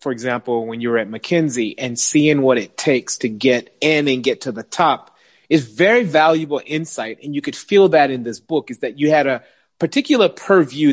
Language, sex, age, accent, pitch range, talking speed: English, male, 30-49, American, 140-190 Hz, 215 wpm